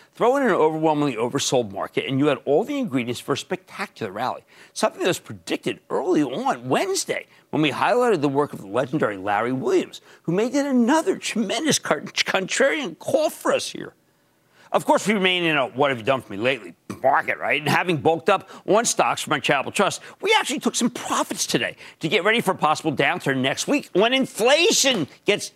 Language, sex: English, male